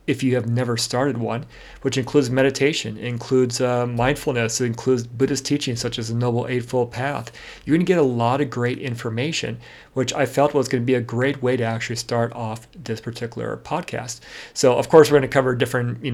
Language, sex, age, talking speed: English, male, 40-59, 200 wpm